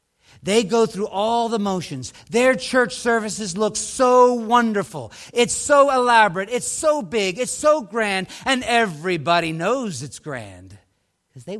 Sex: male